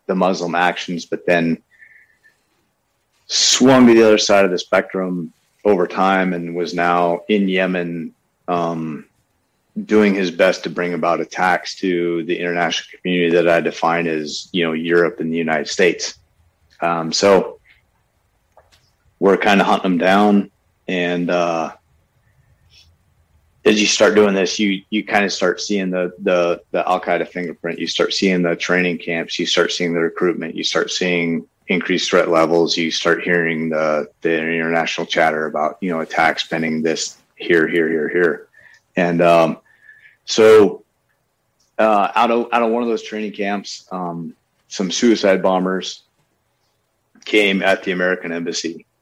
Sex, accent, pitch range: male, American, 85-100 Hz